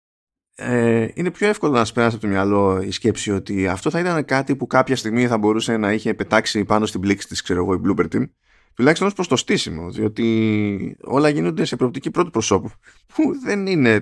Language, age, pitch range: Greek, 20-39, 95-135 Hz